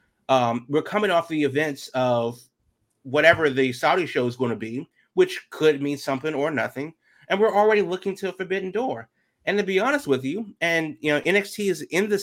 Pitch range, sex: 125-175 Hz, male